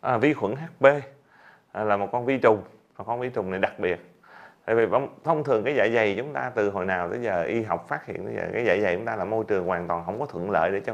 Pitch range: 100-165 Hz